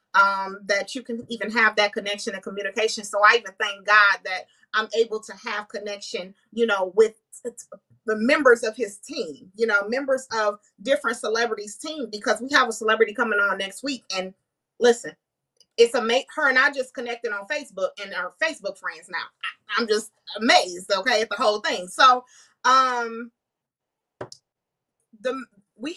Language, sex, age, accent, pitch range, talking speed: English, female, 30-49, American, 215-305 Hz, 180 wpm